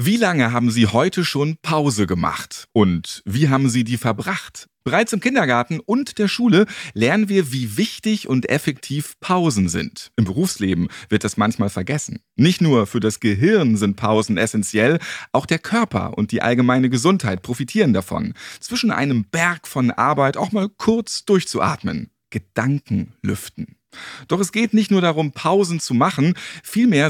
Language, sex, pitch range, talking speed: German, male, 110-185 Hz, 160 wpm